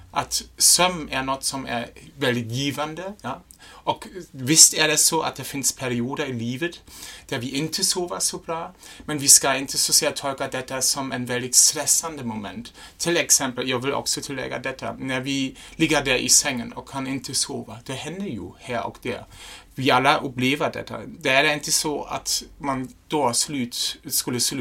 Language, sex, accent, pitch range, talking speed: Swedish, male, German, 120-145 Hz, 180 wpm